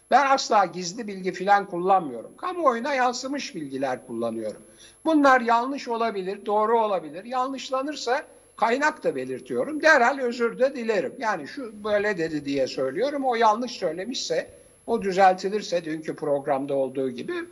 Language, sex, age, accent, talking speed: Turkish, male, 60-79, native, 130 wpm